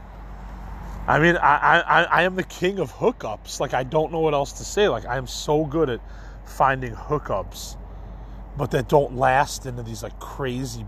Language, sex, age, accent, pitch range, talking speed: English, male, 30-49, American, 105-140 Hz, 190 wpm